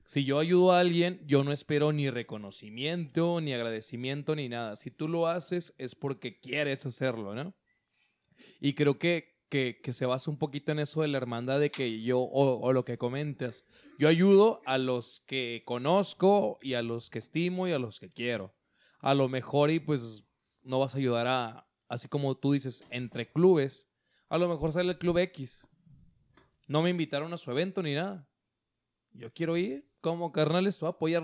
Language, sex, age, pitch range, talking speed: Spanish, male, 20-39, 125-160 Hz, 195 wpm